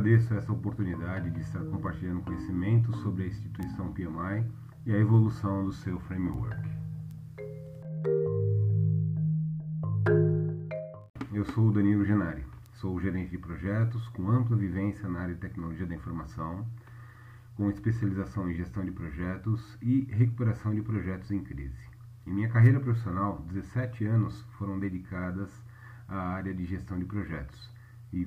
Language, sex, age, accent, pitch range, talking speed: Portuguese, male, 40-59, Brazilian, 90-115 Hz, 135 wpm